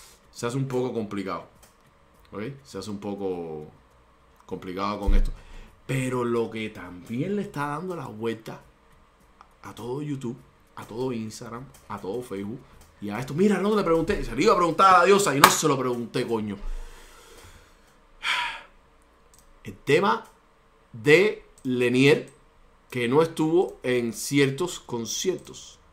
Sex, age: male, 30-49